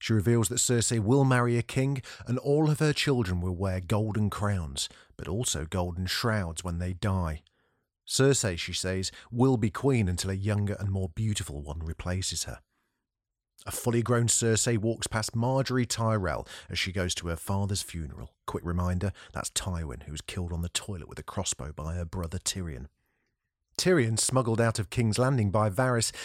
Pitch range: 95-125 Hz